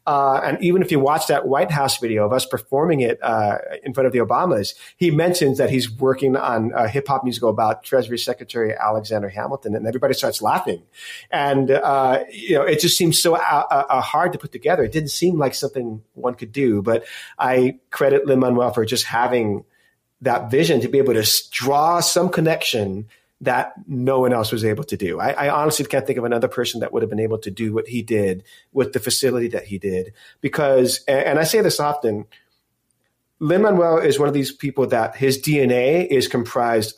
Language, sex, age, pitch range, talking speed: English, male, 30-49, 120-145 Hz, 200 wpm